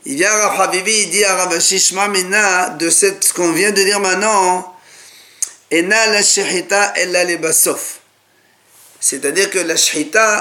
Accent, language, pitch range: French, French, 165-220 Hz